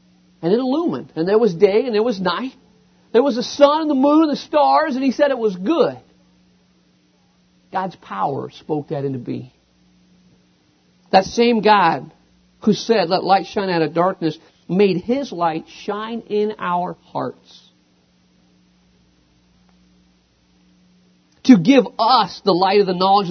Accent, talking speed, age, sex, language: American, 150 wpm, 50-69, male, English